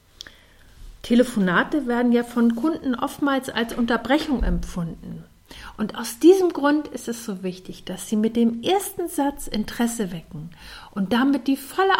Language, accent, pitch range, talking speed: German, German, 180-280 Hz, 145 wpm